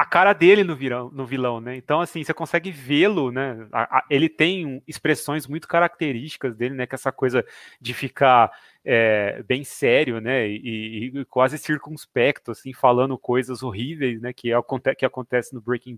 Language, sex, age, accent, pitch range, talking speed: Portuguese, male, 30-49, Brazilian, 120-145 Hz, 160 wpm